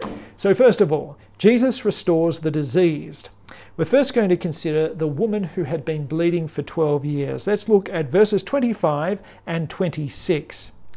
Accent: Australian